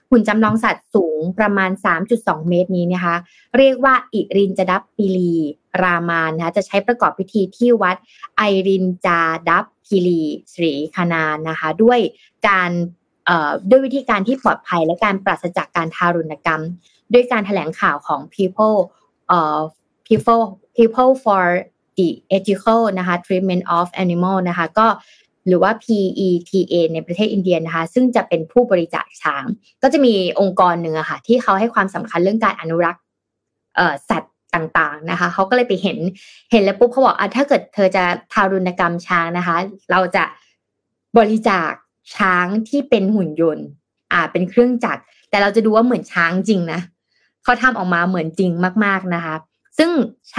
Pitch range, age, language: 170-220 Hz, 20-39, Thai